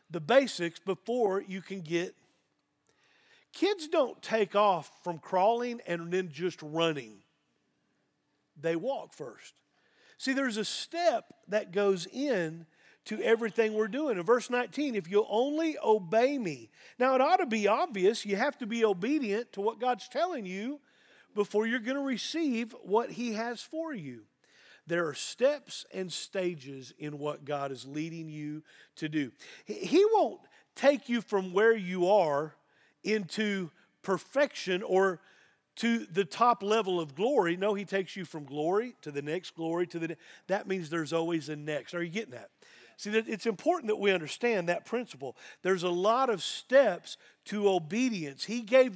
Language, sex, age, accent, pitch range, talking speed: English, male, 40-59, American, 175-245 Hz, 165 wpm